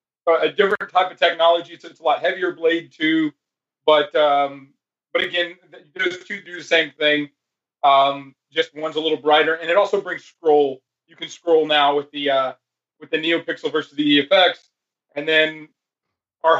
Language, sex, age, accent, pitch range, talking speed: English, male, 30-49, American, 145-165 Hz, 175 wpm